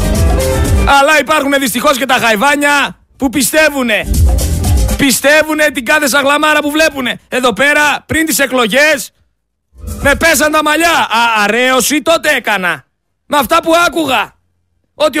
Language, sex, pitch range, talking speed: Greek, male, 240-300 Hz, 120 wpm